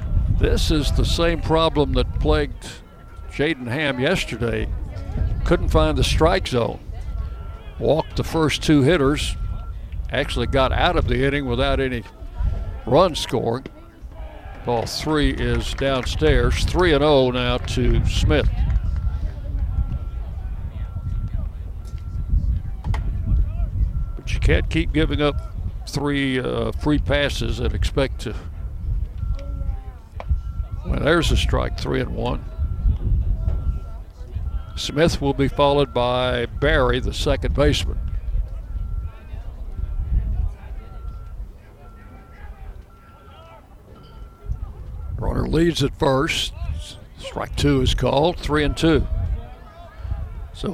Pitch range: 80-120 Hz